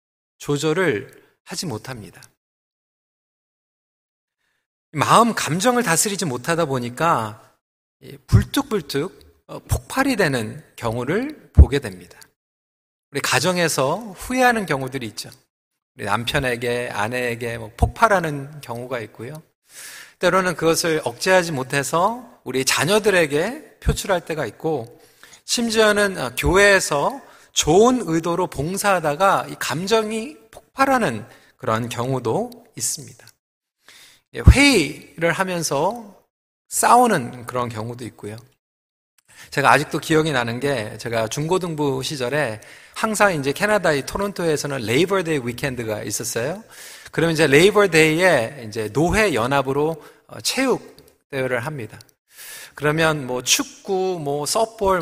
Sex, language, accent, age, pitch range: male, Korean, native, 40-59, 125-190 Hz